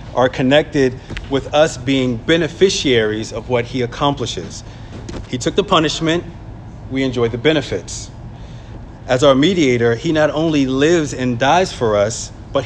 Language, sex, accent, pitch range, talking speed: English, male, American, 115-150 Hz, 140 wpm